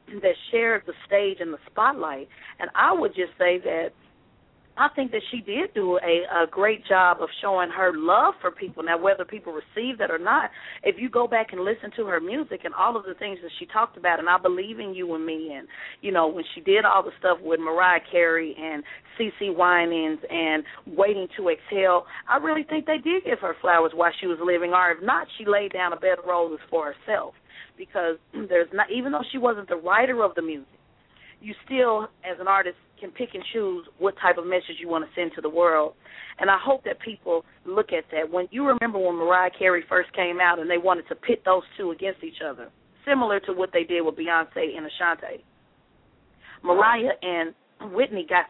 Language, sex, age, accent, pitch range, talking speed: English, female, 40-59, American, 170-225 Hz, 220 wpm